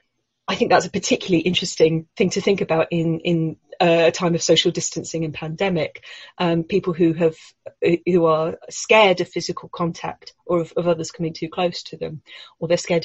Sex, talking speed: female, 195 wpm